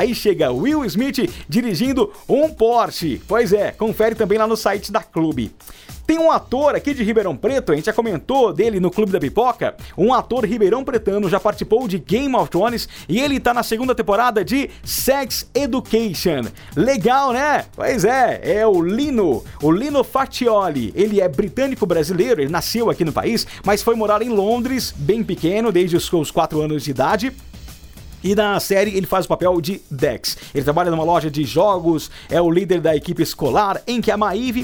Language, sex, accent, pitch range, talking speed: Portuguese, male, Brazilian, 165-225 Hz, 190 wpm